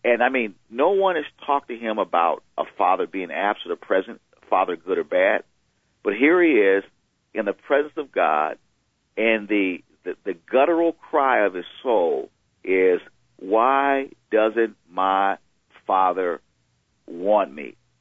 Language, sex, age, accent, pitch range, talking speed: English, male, 40-59, American, 110-165 Hz, 155 wpm